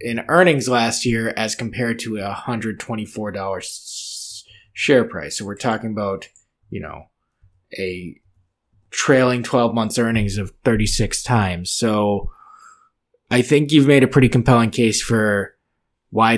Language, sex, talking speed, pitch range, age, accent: English, male, 140 wpm, 100-125 Hz, 20-39, American